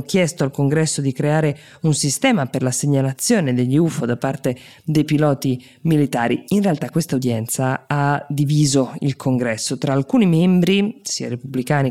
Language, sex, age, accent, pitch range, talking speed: Italian, female, 20-39, native, 130-155 Hz, 150 wpm